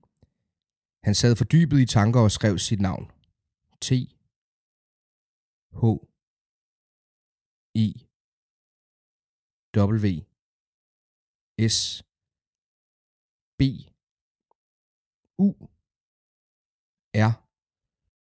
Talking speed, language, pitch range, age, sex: 55 wpm, Danish, 100-120 Hz, 50-69, male